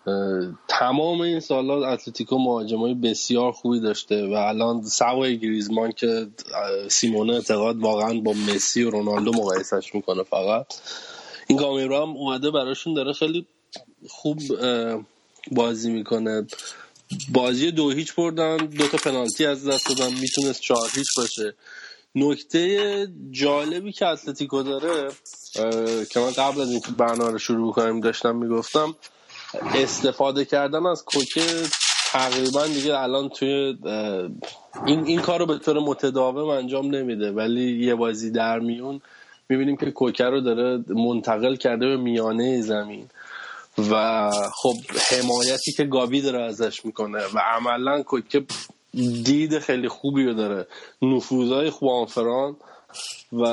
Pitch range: 115-140 Hz